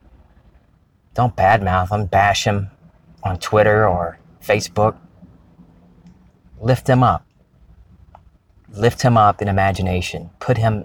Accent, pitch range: American, 90-105 Hz